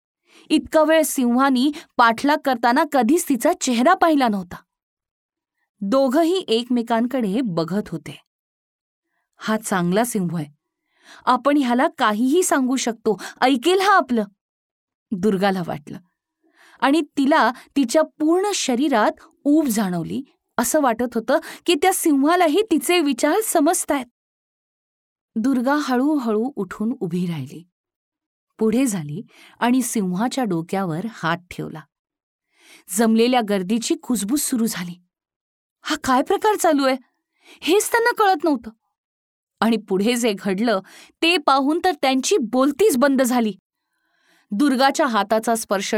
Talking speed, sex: 110 wpm, female